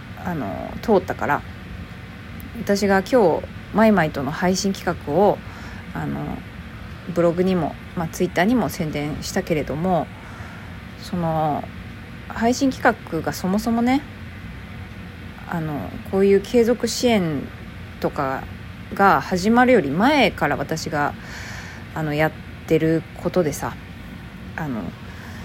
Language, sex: Japanese, female